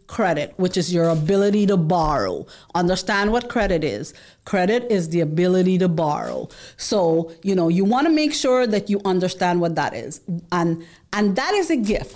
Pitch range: 180-245 Hz